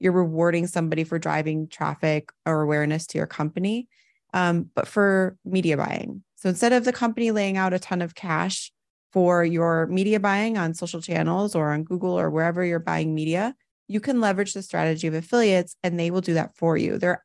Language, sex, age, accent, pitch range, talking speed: English, female, 20-39, American, 165-200 Hz, 200 wpm